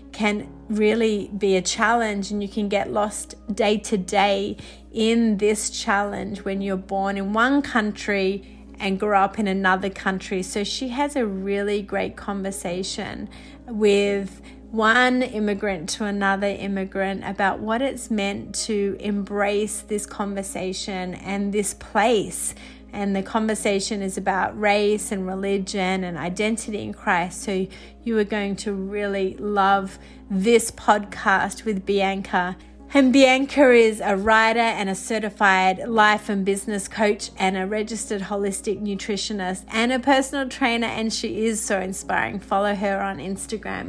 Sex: female